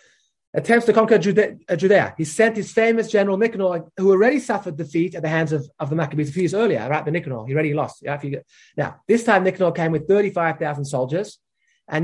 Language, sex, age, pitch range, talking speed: English, male, 30-49, 160-220 Hz, 220 wpm